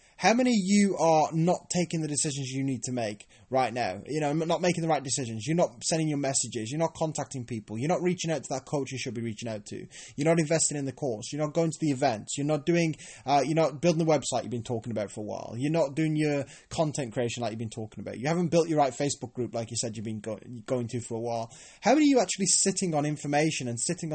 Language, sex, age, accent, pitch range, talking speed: English, male, 20-39, British, 135-175 Hz, 280 wpm